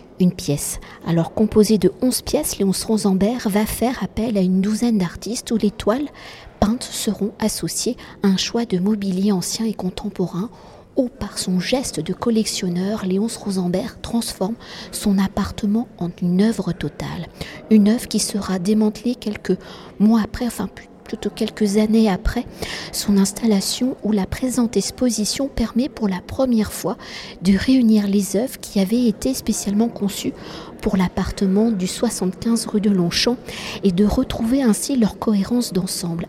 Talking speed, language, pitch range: 155 wpm, French, 195-230 Hz